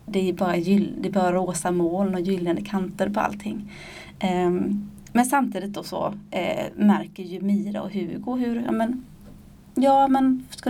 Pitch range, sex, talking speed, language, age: 185-210 Hz, female, 165 wpm, Swedish, 30-49